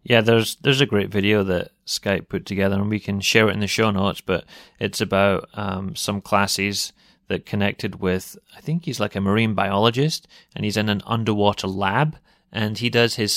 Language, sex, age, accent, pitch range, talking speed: English, male, 30-49, British, 100-115 Hz, 200 wpm